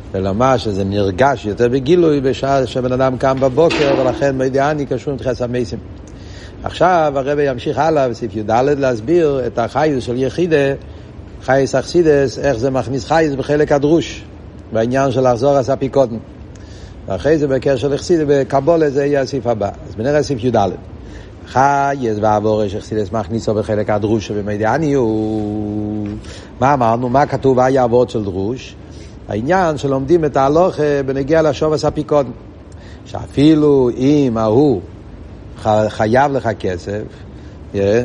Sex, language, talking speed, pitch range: male, Hebrew, 130 wpm, 105-145 Hz